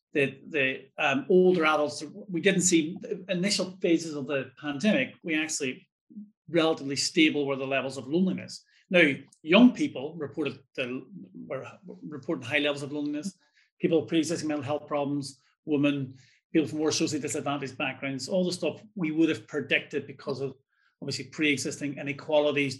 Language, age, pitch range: English, 40-59, 145-175 Hz